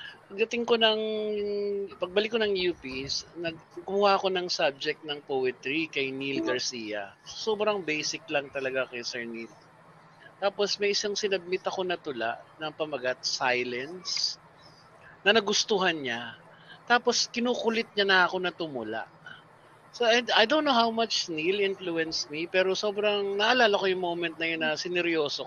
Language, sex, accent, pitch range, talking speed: Filipino, male, native, 150-200 Hz, 145 wpm